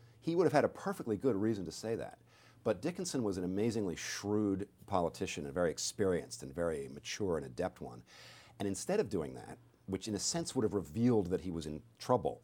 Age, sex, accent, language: 50-69, male, American, English